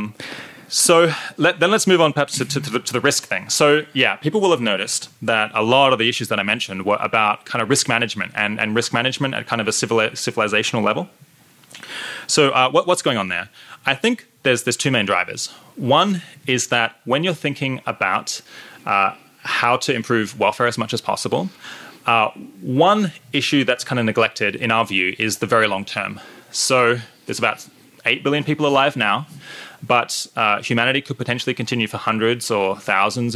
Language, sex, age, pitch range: English, male, 20-39, 110-145 Hz